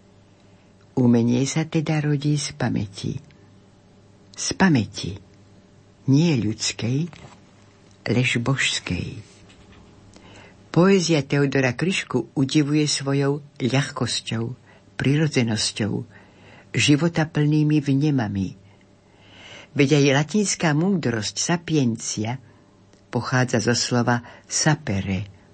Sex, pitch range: female, 100-150 Hz